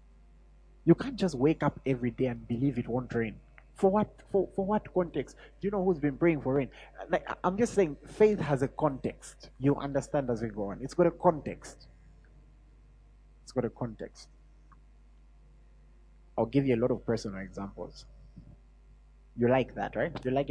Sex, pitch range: male, 120-165 Hz